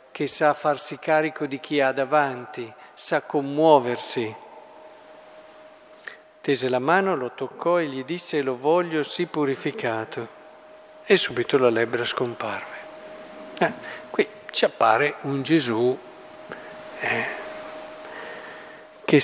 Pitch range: 140-180 Hz